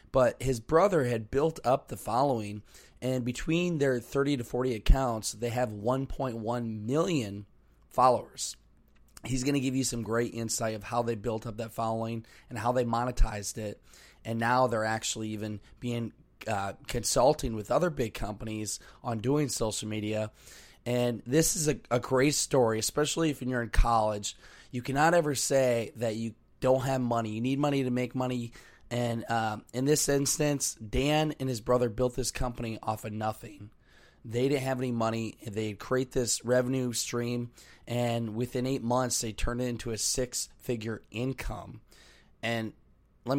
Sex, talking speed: male, 165 wpm